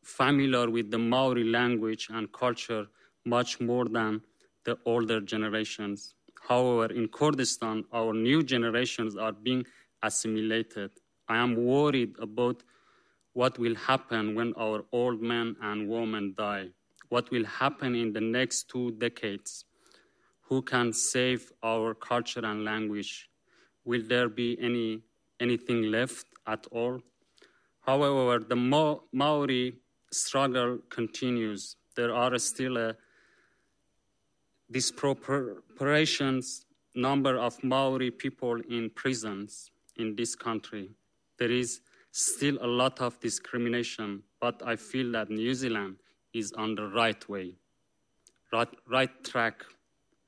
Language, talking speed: English, 120 wpm